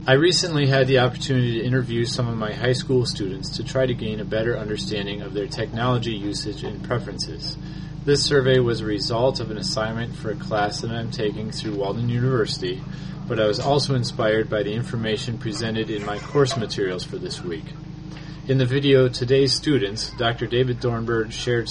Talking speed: 190 wpm